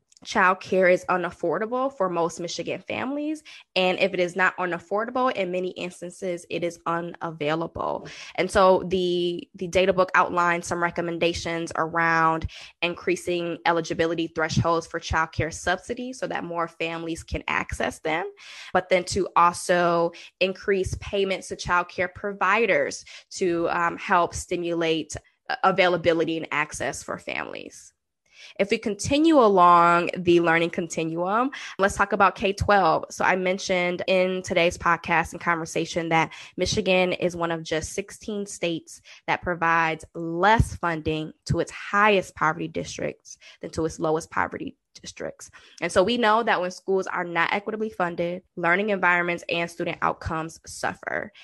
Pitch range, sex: 170-190 Hz, female